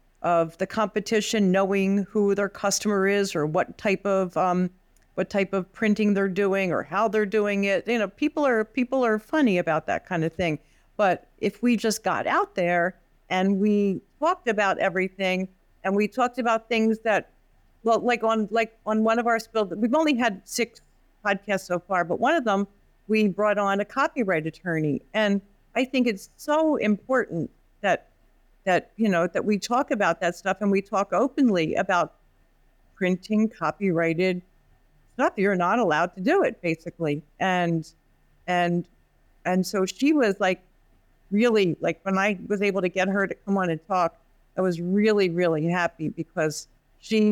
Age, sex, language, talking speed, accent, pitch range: 50-69, female, English, 175 wpm, American, 180-220 Hz